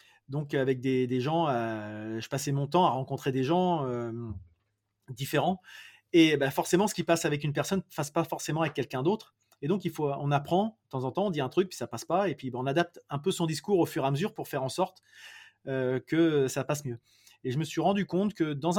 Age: 30-49